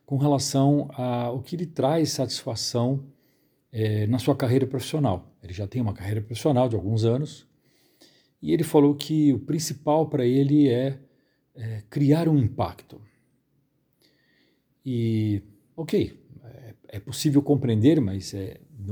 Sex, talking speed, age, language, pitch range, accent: male, 130 wpm, 50-69, Portuguese, 115-150 Hz, Brazilian